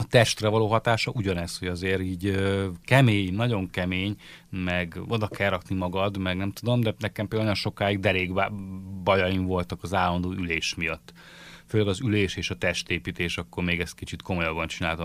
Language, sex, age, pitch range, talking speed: Hungarian, male, 30-49, 90-110 Hz, 170 wpm